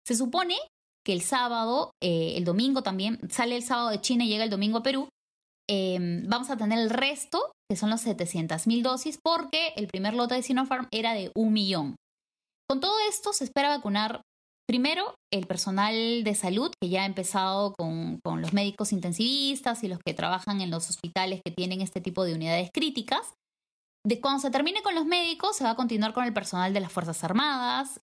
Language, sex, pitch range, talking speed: Spanish, female, 195-255 Hz, 200 wpm